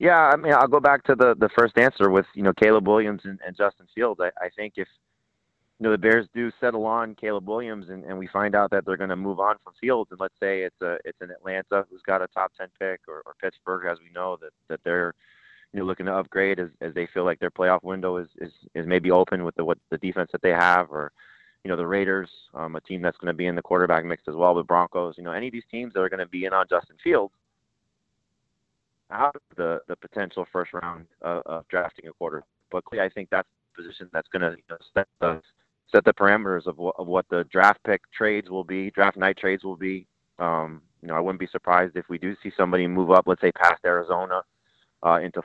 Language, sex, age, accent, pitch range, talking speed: English, male, 30-49, American, 85-100 Hz, 255 wpm